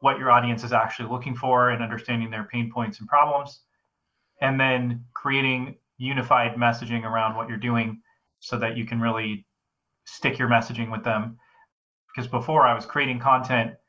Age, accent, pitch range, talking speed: 30-49, American, 115-125 Hz, 170 wpm